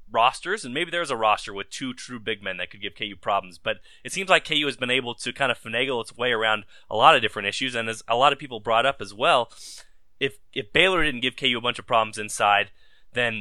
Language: English